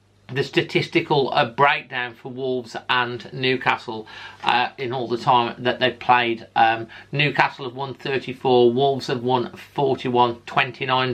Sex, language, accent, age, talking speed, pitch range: male, English, British, 40-59, 140 wpm, 115-130 Hz